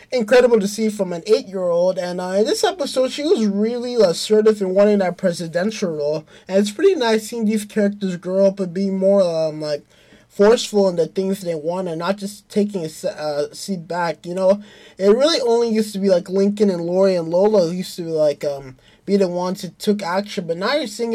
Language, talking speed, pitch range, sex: English, 215 wpm, 175-210 Hz, male